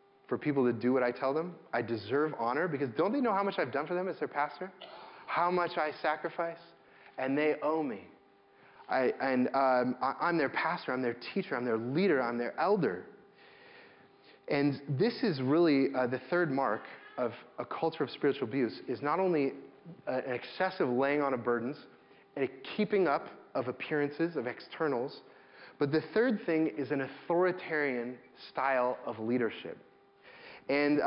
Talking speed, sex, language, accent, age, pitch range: 170 wpm, male, English, American, 30-49, 130-170 Hz